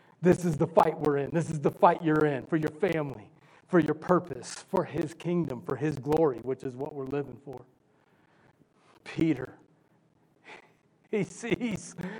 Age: 40-59